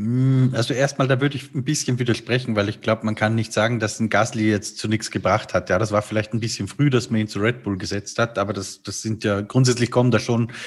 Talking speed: 265 wpm